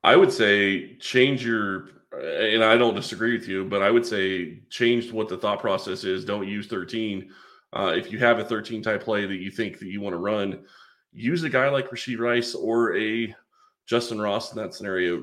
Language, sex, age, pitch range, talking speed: English, male, 30-49, 100-120 Hz, 205 wpm